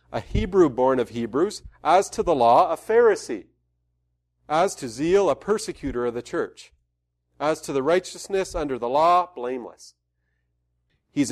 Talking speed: 150 wpm